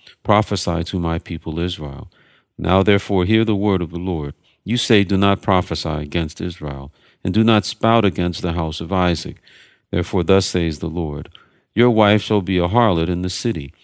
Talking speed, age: 185 wpm, 50-69